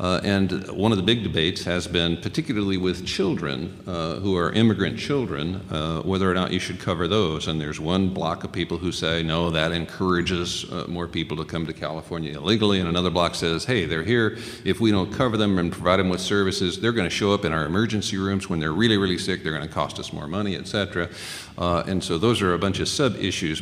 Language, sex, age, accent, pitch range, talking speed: English, male, 50-69, American, 90-105 Hz, 235 wpm